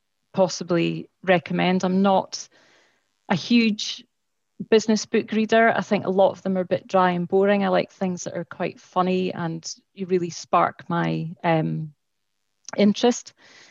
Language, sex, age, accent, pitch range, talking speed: English, female, 30-49, British, 165-190 Hz, 155 wpm